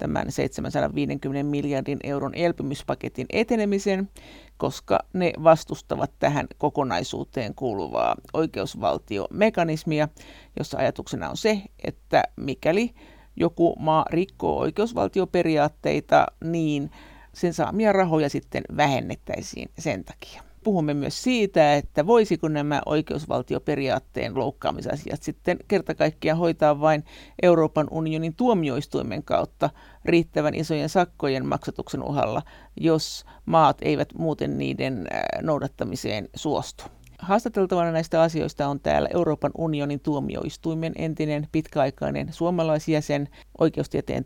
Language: Finnish